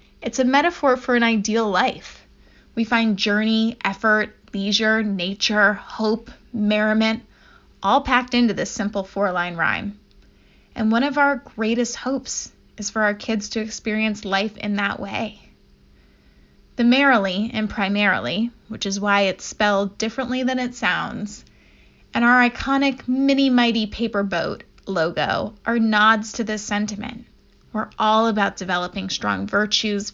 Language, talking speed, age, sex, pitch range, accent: English, 140 wpm, 20-39, female, 200-235 Hz, American